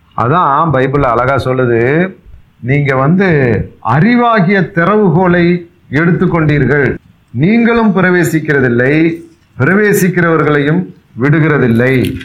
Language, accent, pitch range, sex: Tamil, native, 120-170 Hz, male